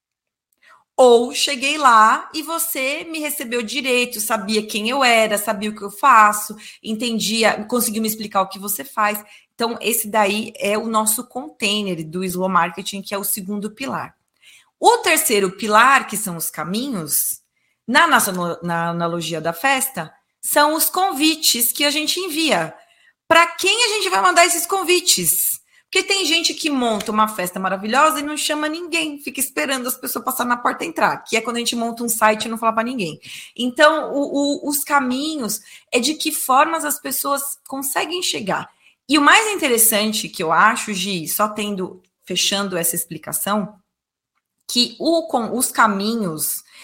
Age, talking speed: 20-39, 170 wpm